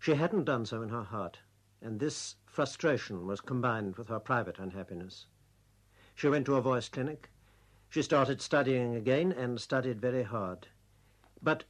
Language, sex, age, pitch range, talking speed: English, male, 60-79, 105-130 Hz, 160 wpm